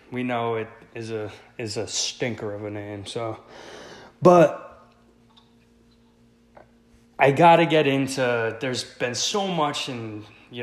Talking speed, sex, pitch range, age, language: 135 wpm, male, 110-140 Hz, 20-39, English